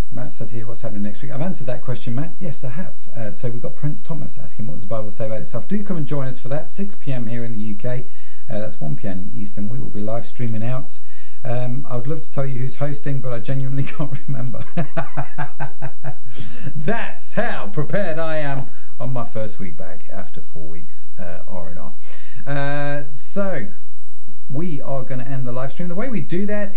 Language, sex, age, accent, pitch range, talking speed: English, male, 40-59, British, 110-145 Hz, 215 wpm